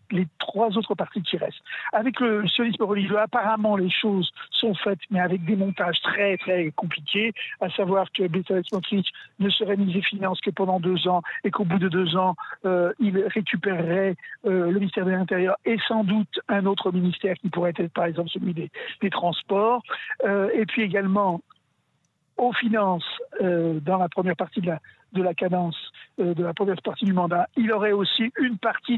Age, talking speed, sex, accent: 50-69, 190 wpm, male, French